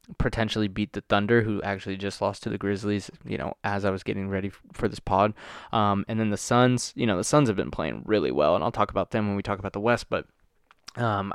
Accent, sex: American, male